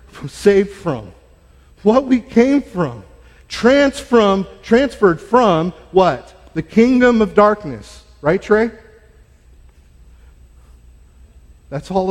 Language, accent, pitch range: English, American, 115-195 Hz